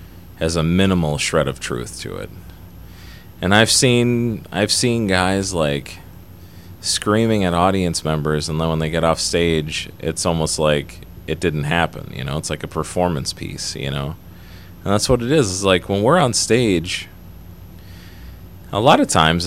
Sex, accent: male, American